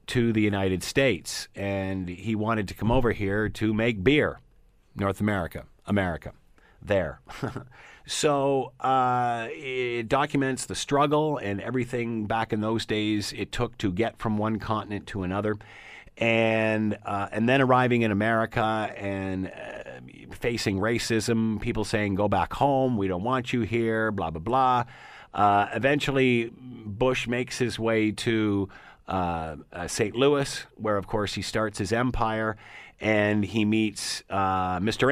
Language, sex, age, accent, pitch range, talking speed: English, male, 50-69, American, 95-115 Hz, 145 wpm